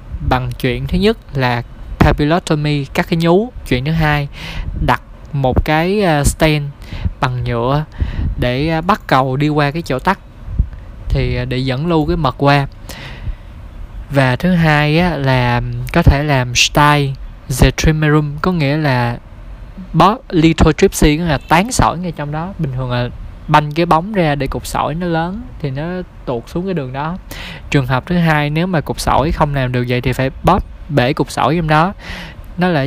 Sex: male